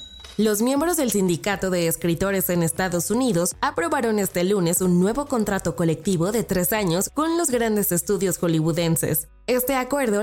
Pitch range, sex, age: 170-215 Hz, female, 20-39